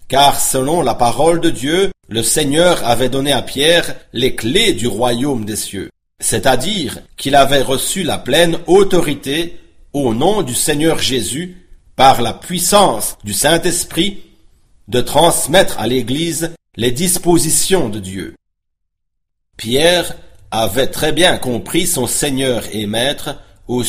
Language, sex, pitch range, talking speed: English, male, 110-165 Hz, 135 wpm